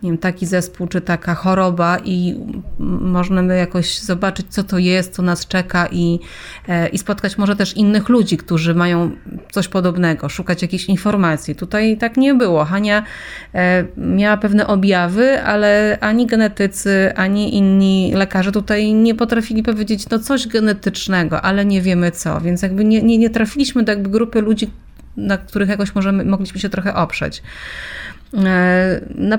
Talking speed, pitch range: 155 wpm, 180-210 Hz